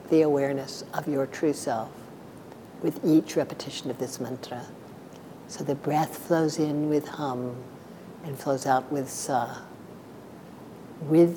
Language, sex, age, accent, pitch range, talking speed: English, female, 60-79, American, 135-160 Hz, 130 wpm